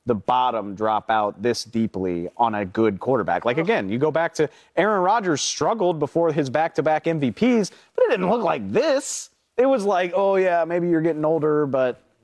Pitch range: 130-205 Hz